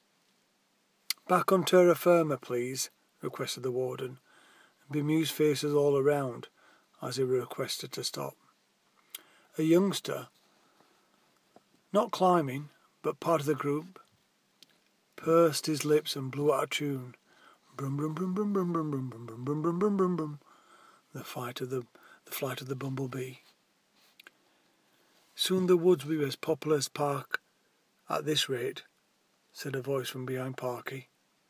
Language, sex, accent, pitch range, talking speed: English, male, British, 135-155 Hz, 120 wpm